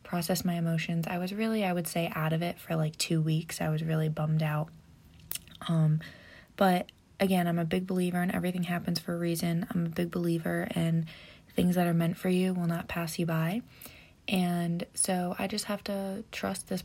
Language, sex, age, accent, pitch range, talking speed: English, female, 20-39, American, 165-190 Hz, 205 wpm